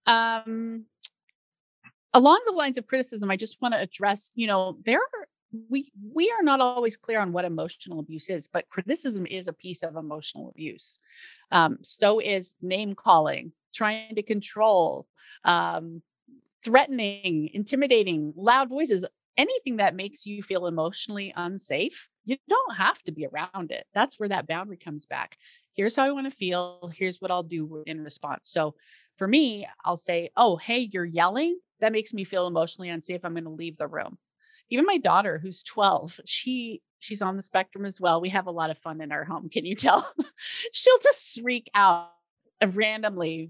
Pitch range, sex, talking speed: 175-260 Hz, female, 180 wpm